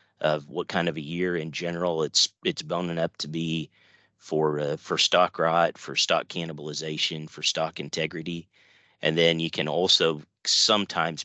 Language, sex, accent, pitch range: English, male, American, 75-85 Hz